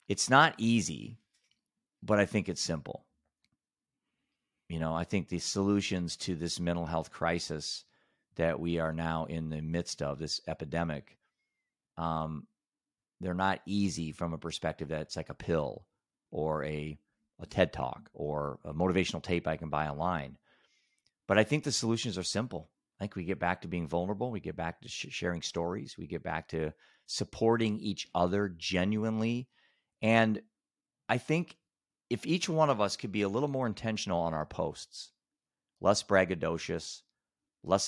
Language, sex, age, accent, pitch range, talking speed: English, male, 40-59, American, 80-100 Hz, 160 wpm